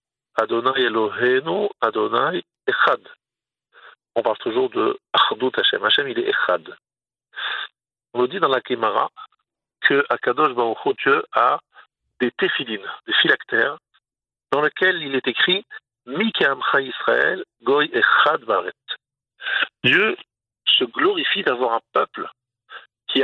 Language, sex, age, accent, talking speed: French, male, 50-69, French, 130 wpm